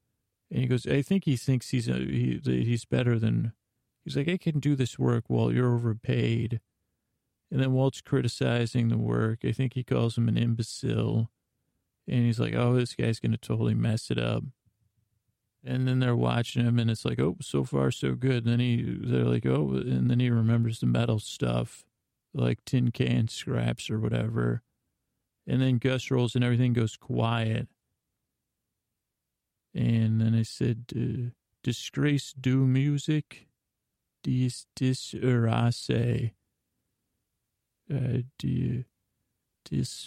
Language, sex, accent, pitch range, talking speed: English, male, American, 80-125 Hz, 155 wpm